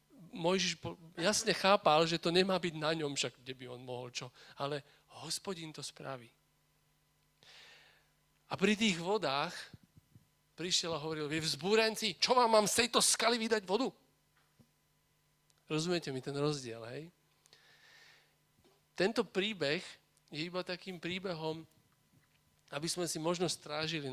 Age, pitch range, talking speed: 40-59, 145-185 Hz, 130 wpm